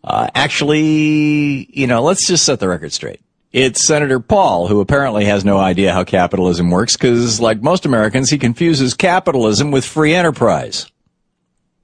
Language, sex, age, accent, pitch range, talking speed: English, male, 50-69, American, 110-160 Hz, 155 wpm